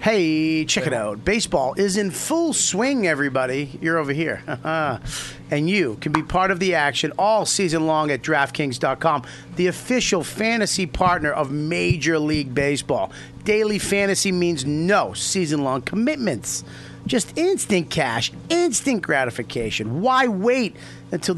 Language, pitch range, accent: English, 140-195 Hz, American